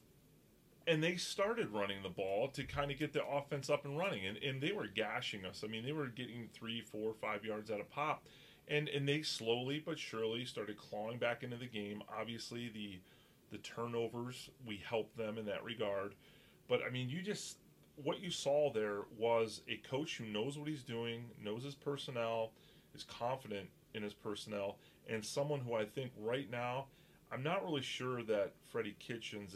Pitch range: 110-145 Hz